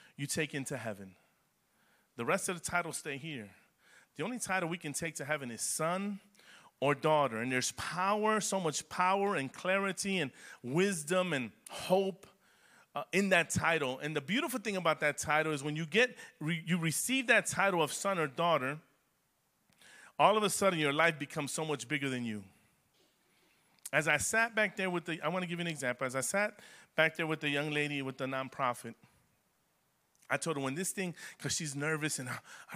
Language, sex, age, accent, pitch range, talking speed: English, male, 30-49, American, 140-190 Hz, 200 wpm